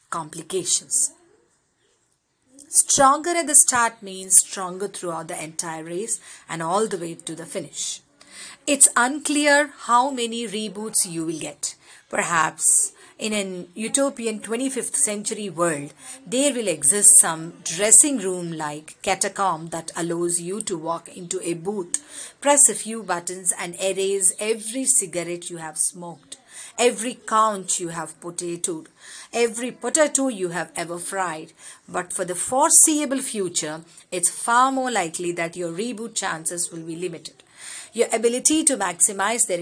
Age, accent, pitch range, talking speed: 50-69, native, 175-235 Hz, 140 wpm